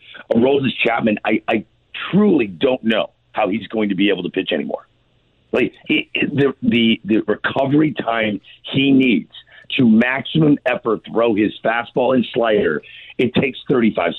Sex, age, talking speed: male, 50-69, 155 wpm